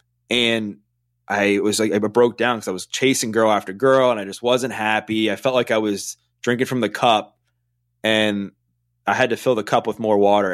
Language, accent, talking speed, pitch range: English, American, 215 wpm, 90-120 Hz